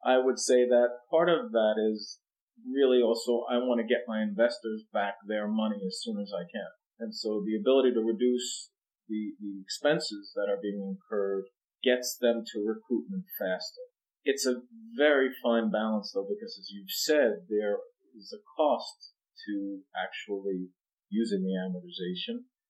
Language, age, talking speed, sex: English, 40-59, 160 wpm, male